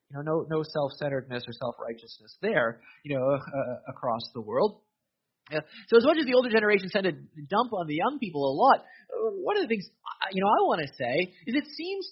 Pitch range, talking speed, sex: 160-270 Hz, 225 wpm, male